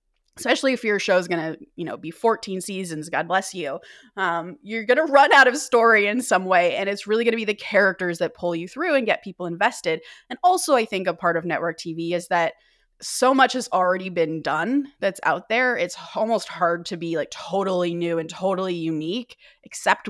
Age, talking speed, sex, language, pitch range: 20-39, 220 wpm, female, English, 175-225 Hz